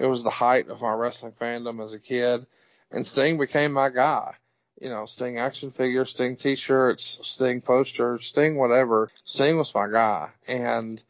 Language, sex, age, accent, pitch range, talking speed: English, male, 40-59, American, 115-140 Hz, 175 wpm